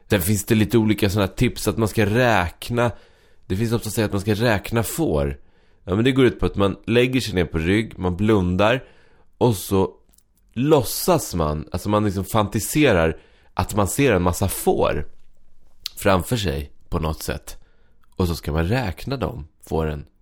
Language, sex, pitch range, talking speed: English, male, 85-115 Hz, 185 wpm